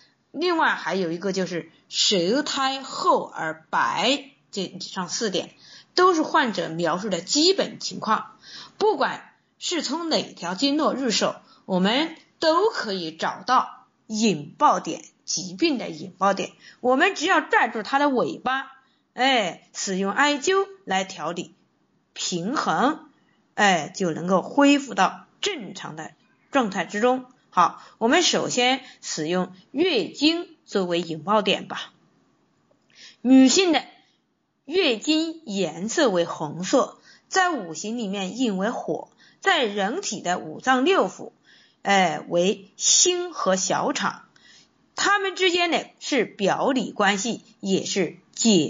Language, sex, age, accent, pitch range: Chinese, female, 20-39, native, 190-300 Hz